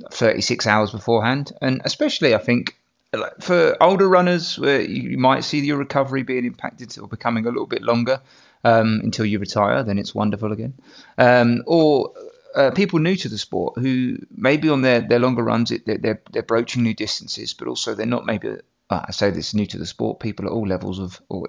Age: 30-49